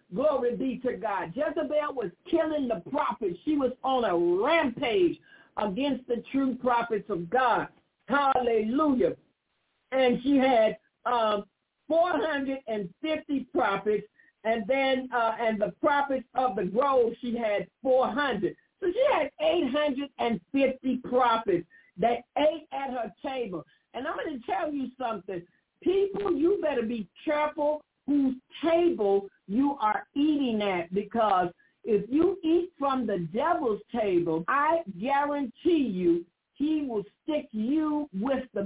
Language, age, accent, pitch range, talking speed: English, 50-69, American, 220-300 Hz, 130 wpm